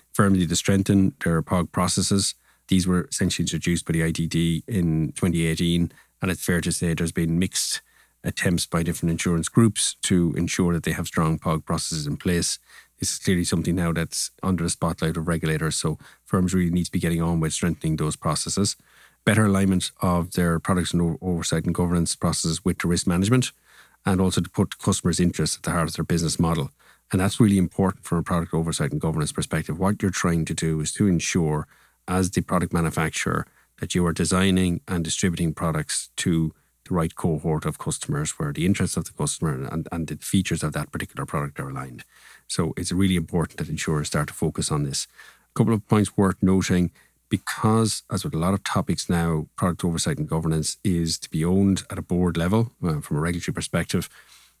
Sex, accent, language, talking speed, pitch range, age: male, Irish, English, 200 wpm, 80-95 Hz, 30-49